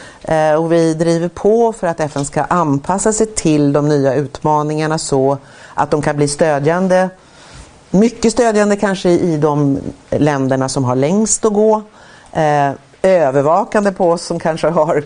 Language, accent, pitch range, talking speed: Swedish, native, 145-185 Hz, 150 wpm